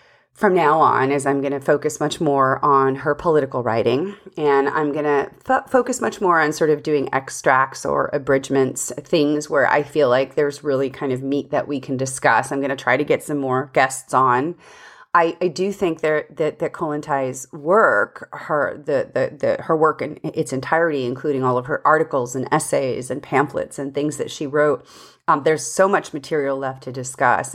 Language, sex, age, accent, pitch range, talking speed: English, female, 30-49, American, 135-160 Hz, 200 wpm